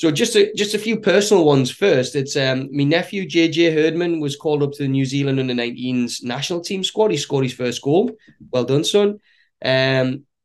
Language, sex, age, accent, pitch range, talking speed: English, male, 20-39, British, 130-165 Hz, 195 wpm